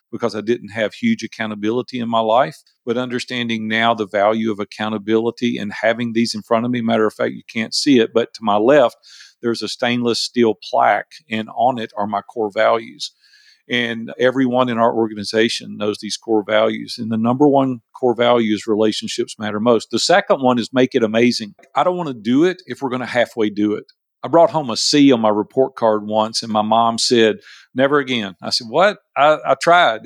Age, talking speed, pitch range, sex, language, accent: 50-69, 215 wpm, 110-125 Hz, male, English, American